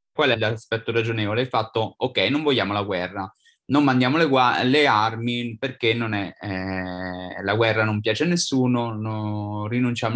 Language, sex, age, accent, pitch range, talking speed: Italian, male, 20-39, native, 105-130 Hz, 170 wpm